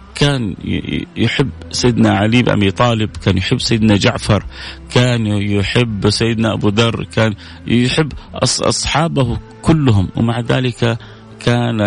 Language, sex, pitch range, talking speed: Arabic, male, 95-120 Hz, 115 wpm